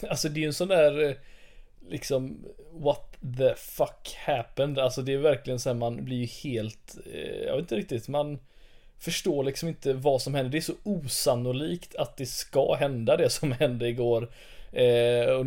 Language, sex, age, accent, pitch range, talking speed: Swedish, male, 20-39, native, 120-140 Hz, 175 wpm